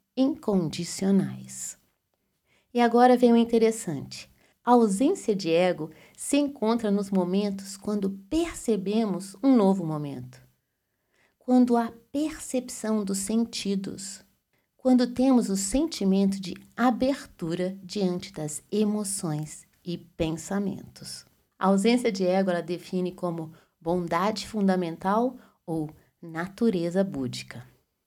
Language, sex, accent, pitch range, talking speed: Portuguese, female, Brazilian, 170-230 Hz, 100 wpm